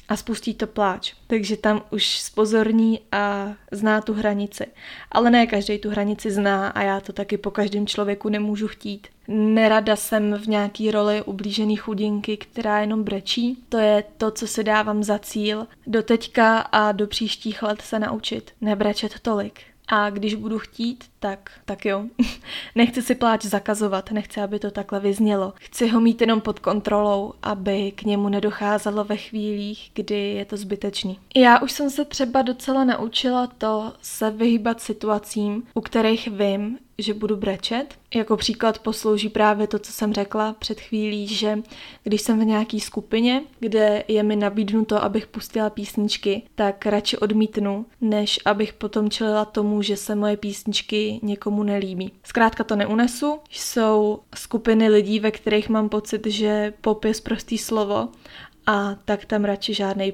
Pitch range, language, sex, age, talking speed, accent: 205-225 Hz, Czech, female, 20-39, 160 wpm, native